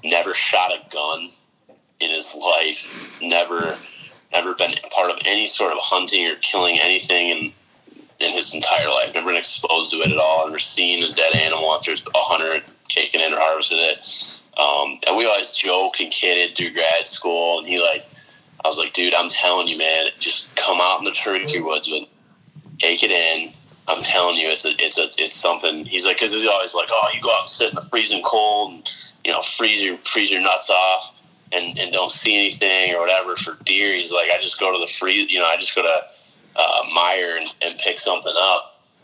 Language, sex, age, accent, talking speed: English, male, 30-49, American, 220 wpm